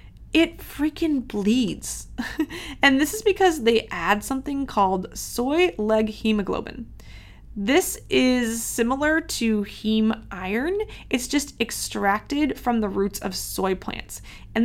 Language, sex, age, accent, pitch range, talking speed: English, female, 20-39, American, 200-280 Hz, 125 wpm